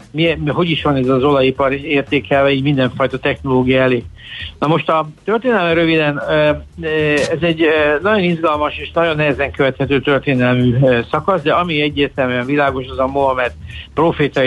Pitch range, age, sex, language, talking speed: 130-150 Hz, 60-79, male, Hungarian, 145 wpm